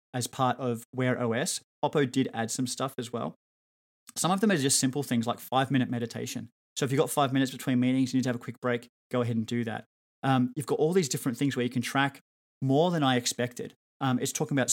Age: 30-49